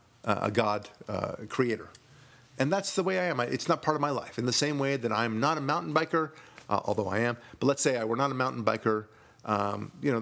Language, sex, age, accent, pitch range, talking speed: English, male, 50-69, American, 110-135 Hz, 260 wpm